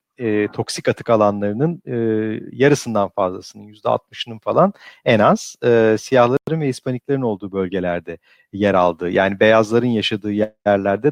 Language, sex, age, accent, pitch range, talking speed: Turkish, male, 50-69, native, 105-145 Hz, 130 wpm